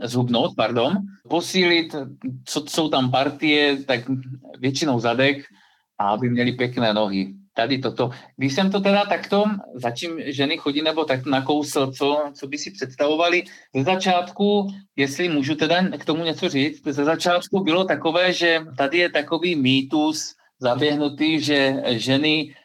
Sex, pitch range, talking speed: male, 130-155 Hz, 145 wpm